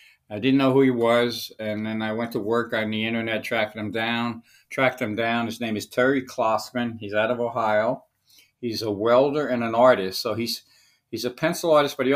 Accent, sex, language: American, male, English